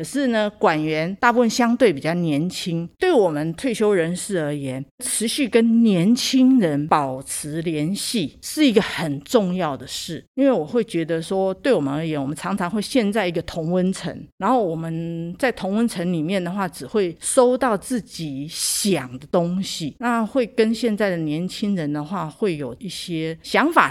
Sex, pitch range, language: female, 160-220 Hz, Chinese